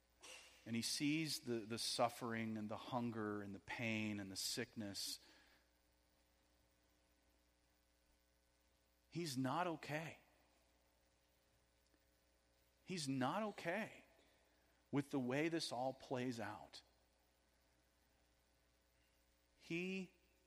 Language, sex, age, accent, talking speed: English, male, 40-59, American, 85 wpm